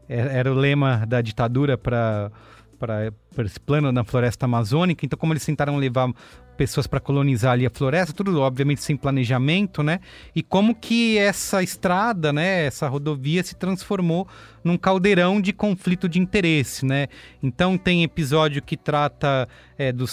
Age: 30-49